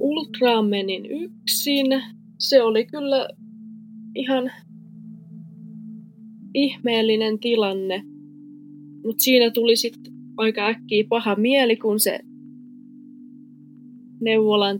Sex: female